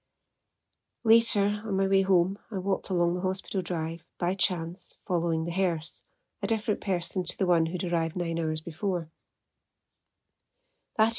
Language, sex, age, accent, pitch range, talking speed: English, female, 40-59, British, 175-205 Hz, 150 wpm